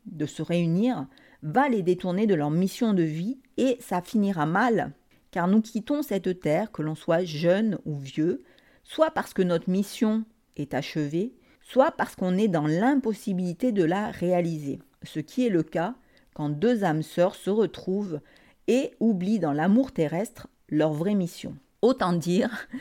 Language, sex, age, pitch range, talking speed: French, female, 50-69, 170-235 Hz, 165 wpm